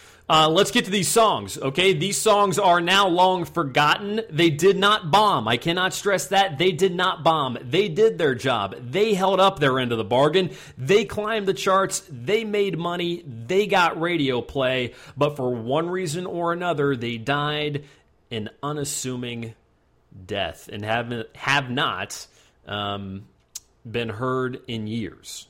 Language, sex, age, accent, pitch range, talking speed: English, male, 30-49, American, 120-185 Hz, 160 wpm